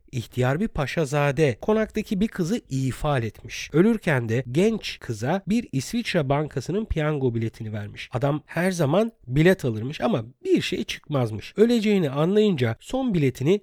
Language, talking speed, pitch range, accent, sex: Turkish, 135 wpm, 130-185 Hz, native, male